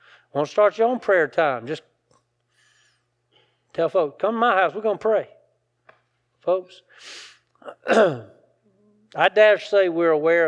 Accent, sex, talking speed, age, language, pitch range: American, male, 135 wpm, 40-59, English, 135-185 Hz